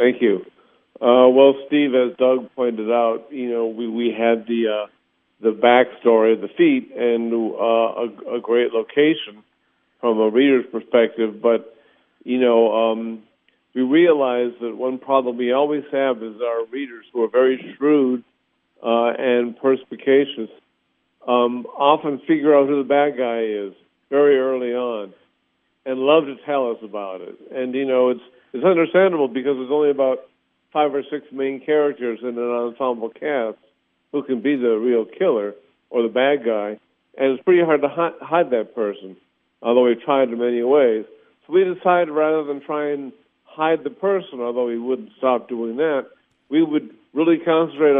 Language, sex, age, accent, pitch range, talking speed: English, male, 50-69, American, 120-145 Hz, 170 wpm